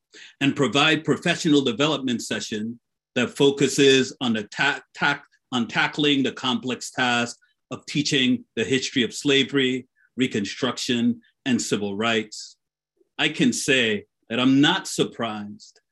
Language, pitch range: English, 120-150 Hz